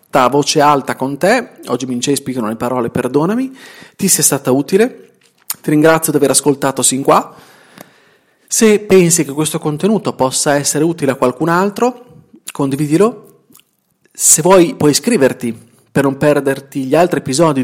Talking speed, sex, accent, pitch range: 150 wpm, male, native, 130-175 Hz